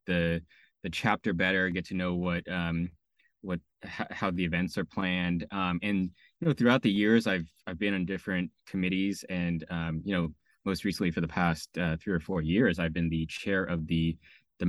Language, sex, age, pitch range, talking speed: English, male, 20-39, 85-100 Hz, 205 wpm